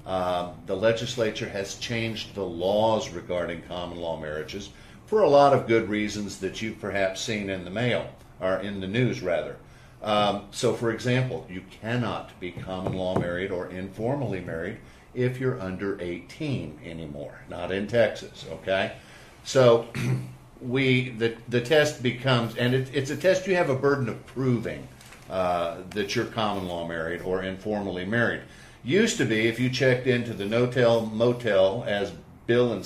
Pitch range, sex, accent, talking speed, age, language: 95-125 Hz, male, American, 165 wpm, 50-69, English